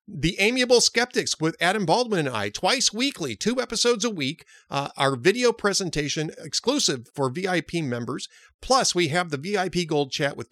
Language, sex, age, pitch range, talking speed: English, male, 40-59, 130-180 Hz, 170 wpm